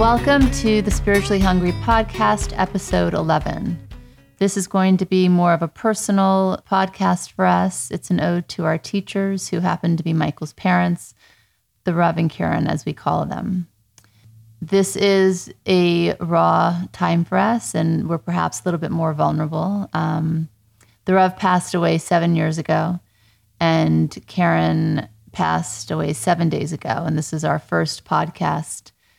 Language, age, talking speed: English, 30-49, 155 wpm